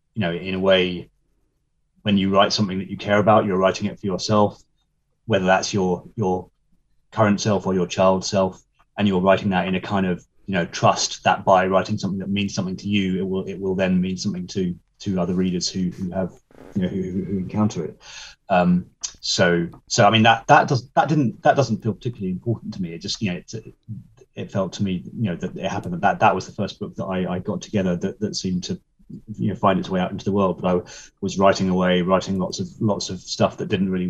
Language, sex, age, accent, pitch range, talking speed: English, male, 30-49, British, 95-110 Hz, 240 wpm